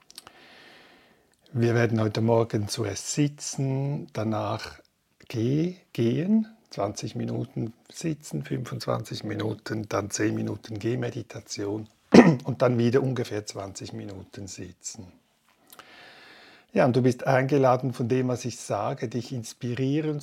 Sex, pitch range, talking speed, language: male, 110-130 Hz, 105 wpm, German